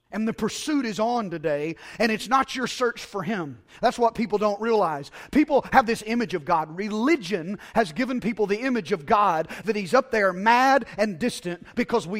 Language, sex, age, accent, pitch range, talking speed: English, male, 30-49, American, 215-285 Hz, 200 wpm